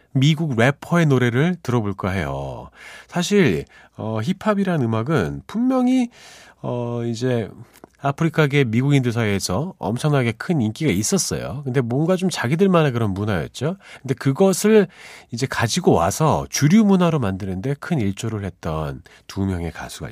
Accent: native